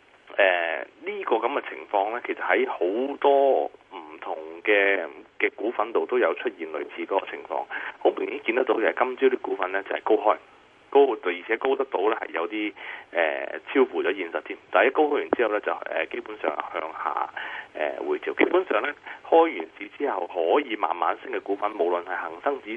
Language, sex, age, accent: Chinese, male, 30-49, native